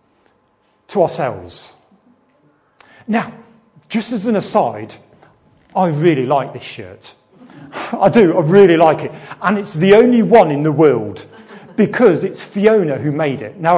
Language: English